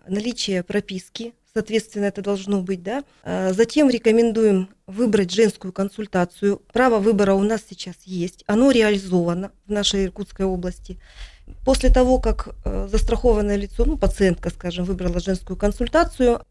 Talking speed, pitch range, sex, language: 125 wpm, 190-225 Hz, female, Russian